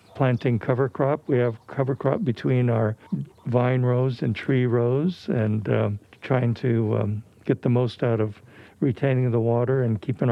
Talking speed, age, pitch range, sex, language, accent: 170 wpm, 60-79, 115-130 Hz, male, English, American